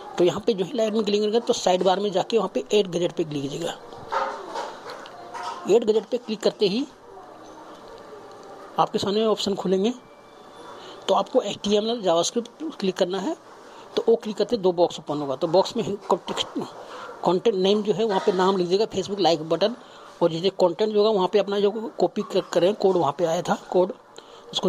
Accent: native